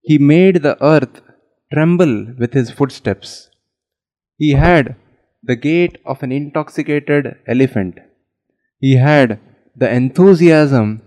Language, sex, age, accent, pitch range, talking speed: English, male, 20-39, Indian, 115-155 Hz, 110 wpm